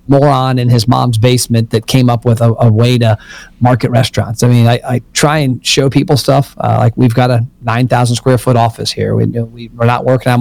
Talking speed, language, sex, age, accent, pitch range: 235 wpm, English, male, 40-59, American, 115-135 Hz